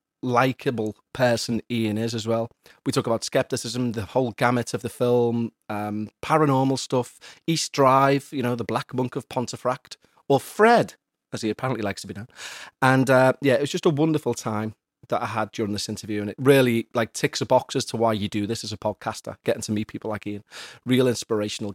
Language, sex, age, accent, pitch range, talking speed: English, male, 30-49, British, 115-145 Hz, 205 wpm